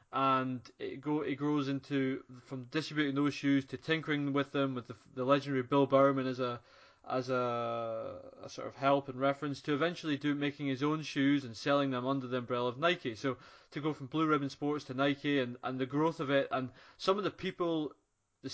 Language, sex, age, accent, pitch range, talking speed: English, male, 20-39, British, 130-150 Hz, 215 wpm